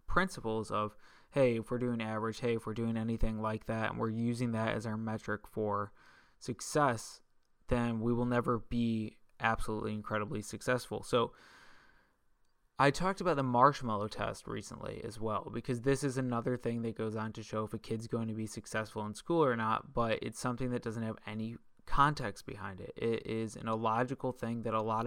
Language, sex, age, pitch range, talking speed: English, male, 20-39, 110-125 Hz, 190 wpm